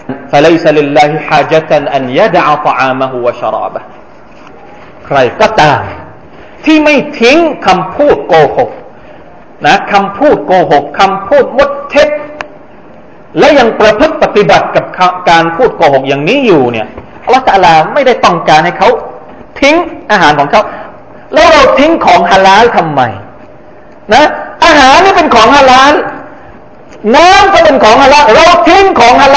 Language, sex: Thai, male